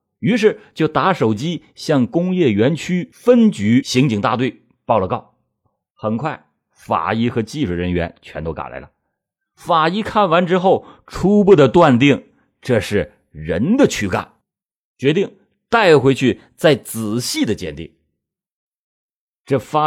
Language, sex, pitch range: Chinese, male, 105-160 Hz